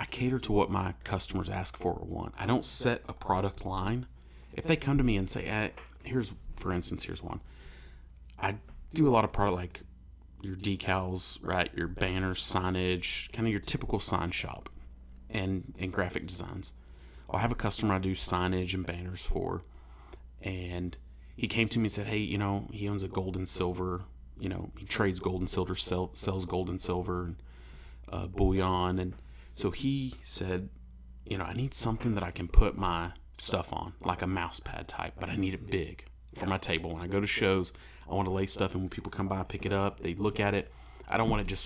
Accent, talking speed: American, 215 wpm